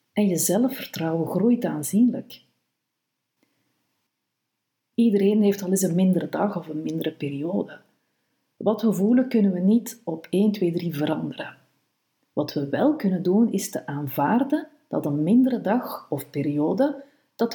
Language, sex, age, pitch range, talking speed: Dutch, female, 50-69, 170-230 Hz, 145 wpm